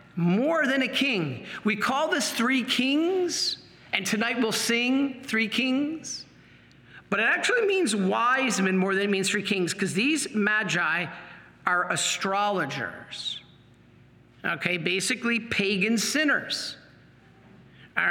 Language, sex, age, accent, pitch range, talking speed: English, male, 50-69, American, 190-260 Hz, 125 wpm